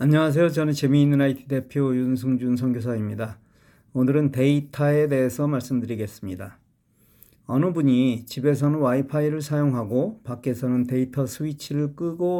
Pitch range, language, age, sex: 125-150 Hz, Korean, 40-59, male